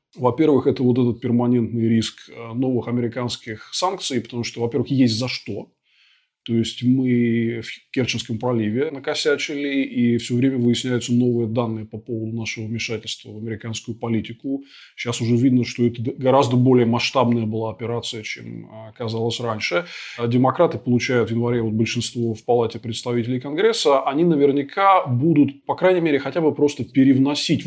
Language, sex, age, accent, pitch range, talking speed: Russian, male, 20-39, native, 120-145 Hz, 145 wpm